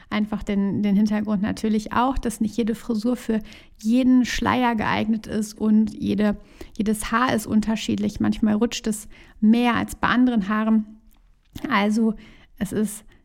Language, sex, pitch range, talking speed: German, female, 210-235 Hz, 140 wpm